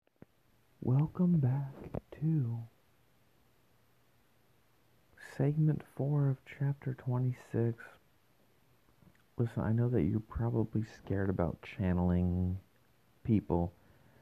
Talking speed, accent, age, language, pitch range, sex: 75 wpm, American, 40-59, English, 110-150 Hz, male